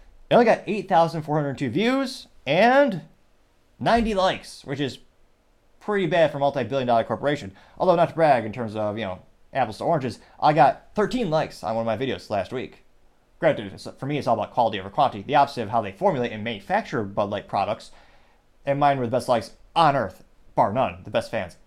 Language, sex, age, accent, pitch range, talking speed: English, male, 30-49, American, 120-180 Hz, 200 wpm